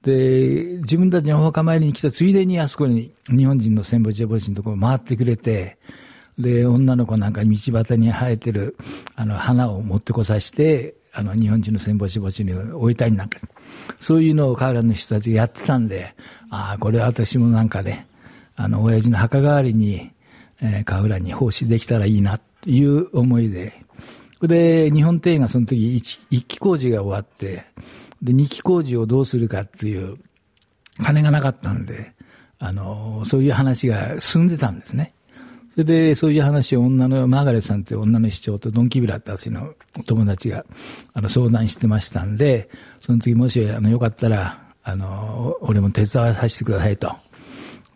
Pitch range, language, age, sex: 110-130 Hz, Japanese, 60-79, male